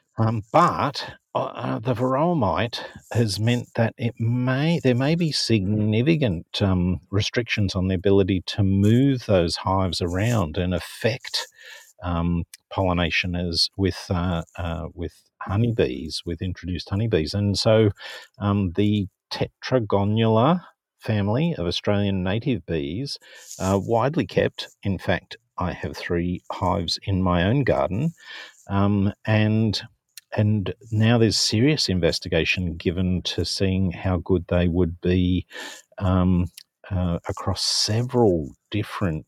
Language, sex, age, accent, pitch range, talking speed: English, male, 50-69, Australian, 90-110 Hz, 125 wpm